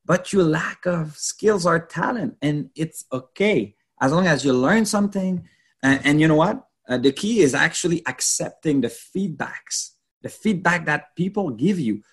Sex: male